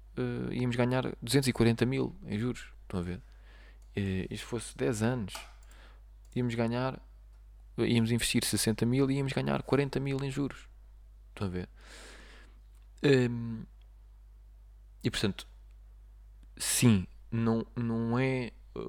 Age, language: 20-39, Portuguese